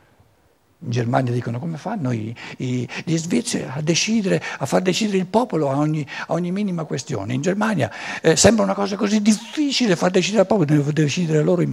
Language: Italian